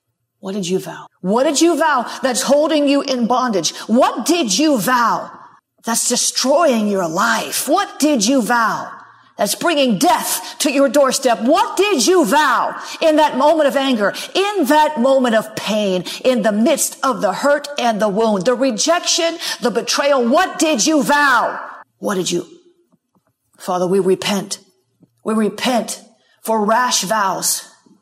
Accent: American